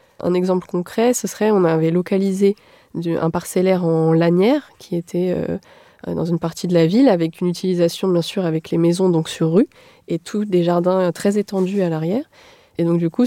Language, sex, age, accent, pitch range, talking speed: French, female, 20-39, French, 170-205 Hz, 195 wpm